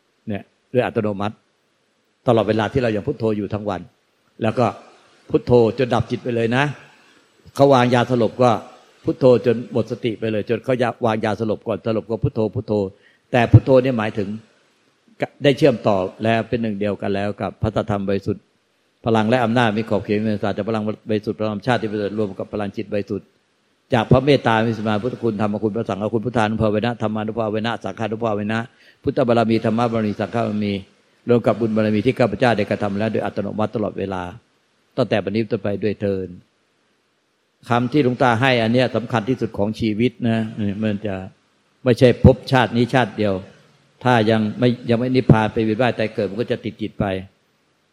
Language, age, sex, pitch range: Thai, 60-79, male, 105-120 Hz